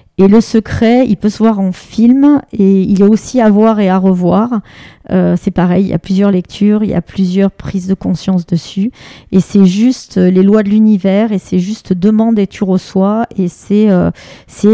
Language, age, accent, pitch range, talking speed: French, 40-59, French, 180-210 Hz, 210 wpm